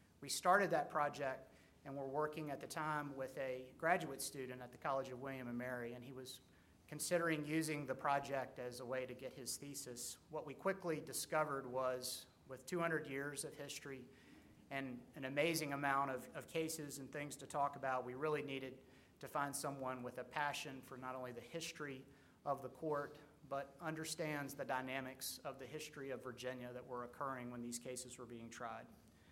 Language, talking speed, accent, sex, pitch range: English, 185 wpm, American, male, 130-150 Hz